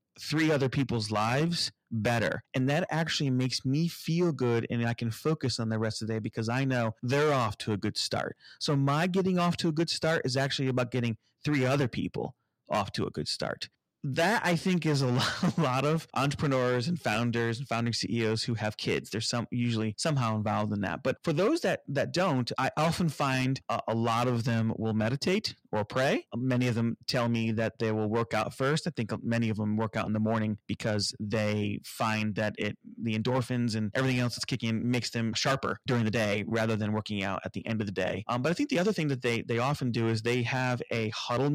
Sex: male